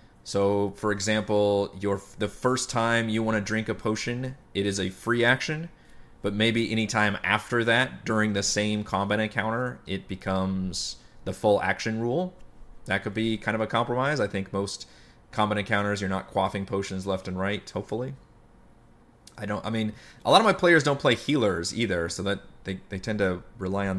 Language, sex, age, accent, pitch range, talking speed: English, male, 30-49, American, 95-115 Hz, 195 wpm